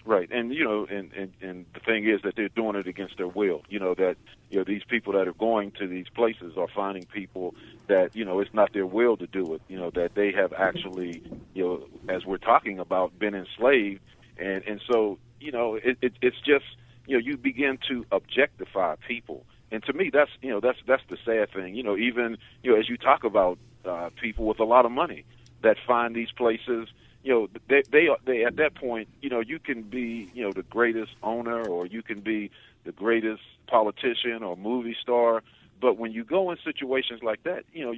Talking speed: 225 wpm